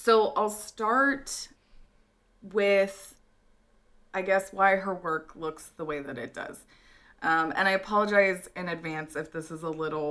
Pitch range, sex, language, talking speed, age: 155-205 Hz, female, English, 155 wpm, 20-39